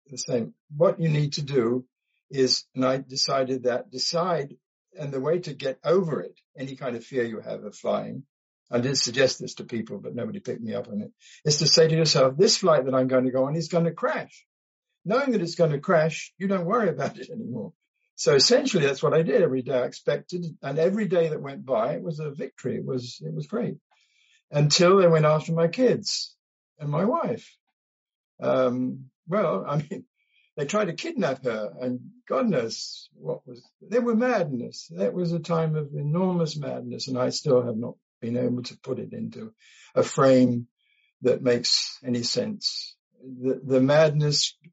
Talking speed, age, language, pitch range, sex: 200 wpm, 60-79, English, 130-180 Hz, male